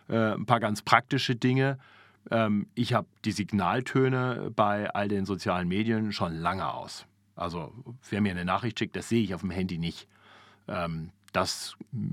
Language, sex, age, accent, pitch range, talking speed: German, male, 40-59, German, 105-125 Hz, 155 wpm